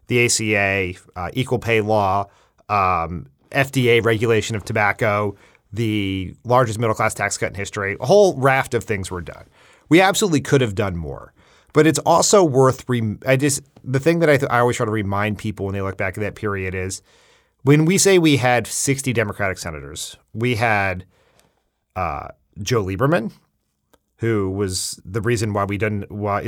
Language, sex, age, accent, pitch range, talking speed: English, male, 30-49, American, 100-135 Hz, 180 wpm